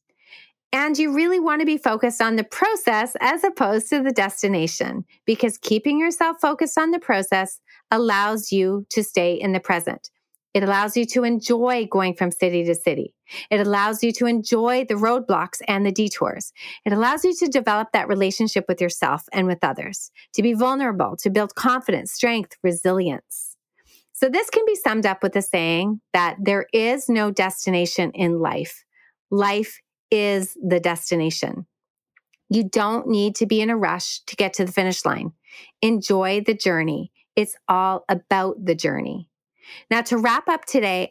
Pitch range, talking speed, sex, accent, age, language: 190-240 Hz, 170 wpm, female, American, 40-59, English